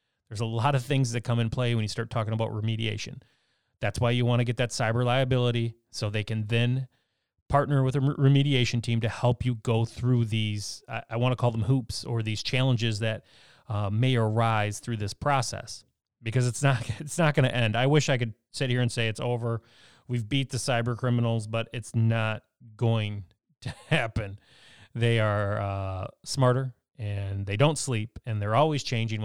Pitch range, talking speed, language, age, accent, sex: 110-130 Hz, 200 wpm, English, 30-49, American, male